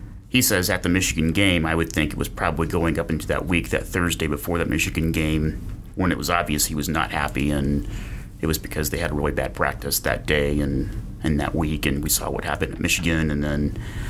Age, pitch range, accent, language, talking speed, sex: 30-49, 80-100 Hz, American, English, 235 wpm, male